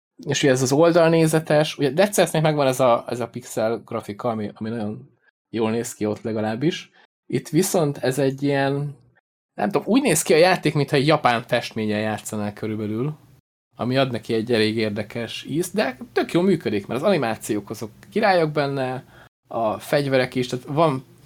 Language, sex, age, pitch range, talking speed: Hungarian, male, 20-39, 110-145 Hz, 180 wpm